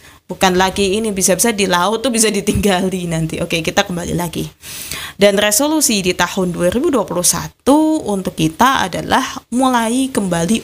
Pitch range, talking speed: 175-235 Hz, 135 wpm